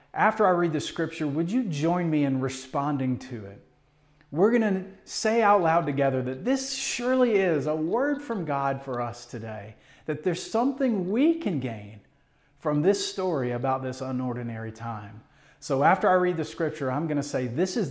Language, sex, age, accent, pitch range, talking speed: English, male, 40-59, American, 130-190 Hz, 190 wpm